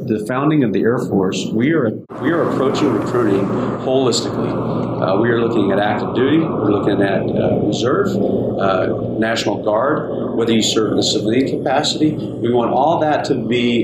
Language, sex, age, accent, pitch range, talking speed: English, male, 40-59, American, 100-125 Hz, 180 wpm